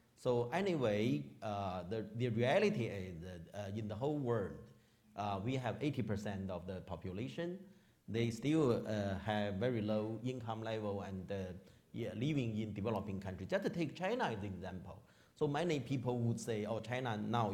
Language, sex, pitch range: English, male, 100-130 Hz